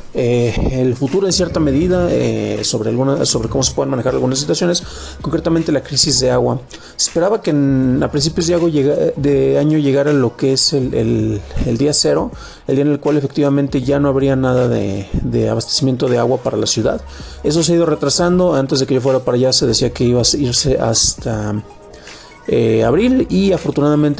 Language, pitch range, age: Spanish, 125-155 Hz, 40-59